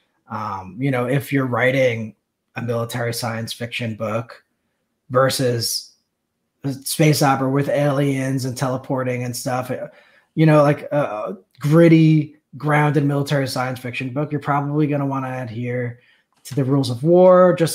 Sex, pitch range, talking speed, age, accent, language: male, 120-145 Hz, 150 wpm, 20-39, American, English